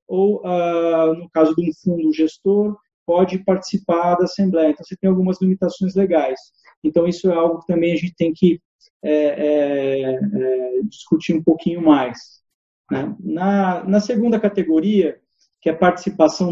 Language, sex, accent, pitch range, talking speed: Portuguese, male, Brazilian, 155-190 Hz, 140 wpm